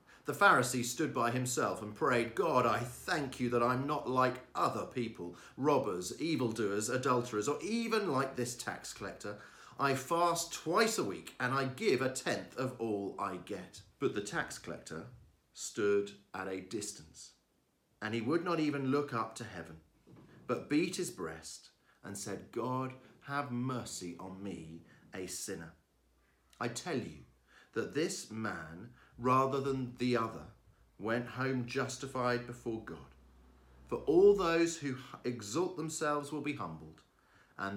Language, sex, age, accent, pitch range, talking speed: English, male, 40-59, British, 85-130 Hz, 150 wpm